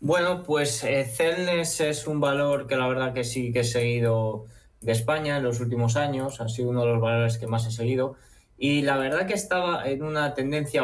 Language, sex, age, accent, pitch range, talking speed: Spanish, male, 20-39, Spanish, 115-145 Hz, 215 wpm